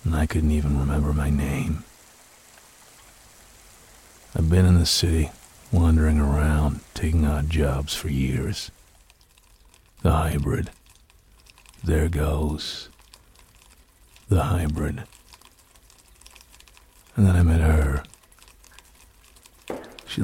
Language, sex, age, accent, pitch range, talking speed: English, male, 50-69, American, 75-90 Hz, 90 wpm